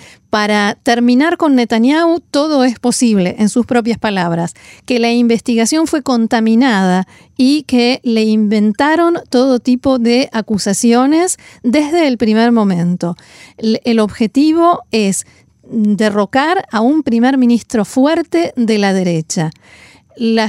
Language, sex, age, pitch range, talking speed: Spanish, female, 40-59, 210-265 Hz, 120 wpm